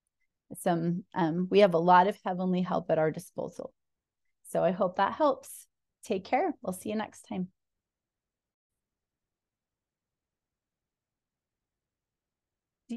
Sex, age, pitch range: female, 30-49, 175-210 Hz